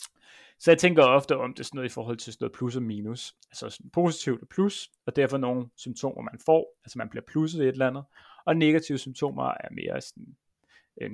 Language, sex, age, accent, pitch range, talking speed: Danish, male, 30-49, native, 120-160 Hz, 225 wpm